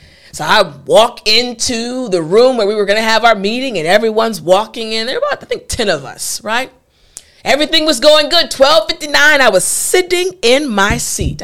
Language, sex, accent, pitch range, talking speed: English, female, American, 185-300 Hz, 200 wpm